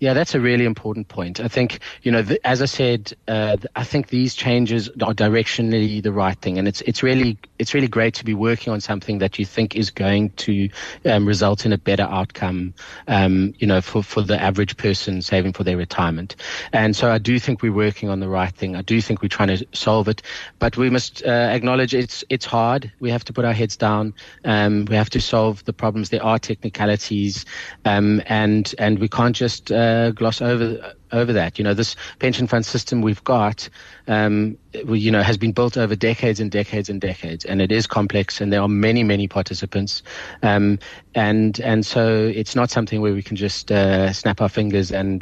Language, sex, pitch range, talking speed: English, male, 100-115 Hz, 225 wpm